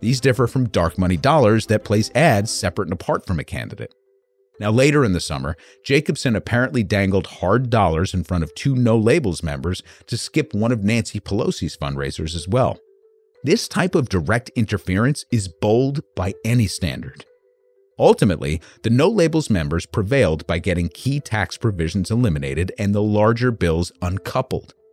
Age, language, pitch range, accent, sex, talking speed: 40-59, English, 85-125 Hz, American, male, 165 wpm